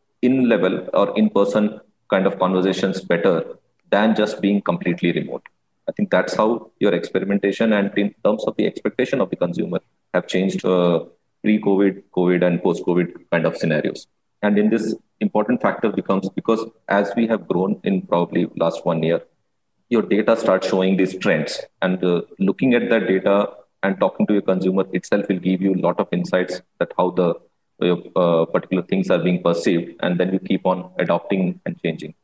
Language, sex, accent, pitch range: Chinese, male, Indian, 90-105 Hz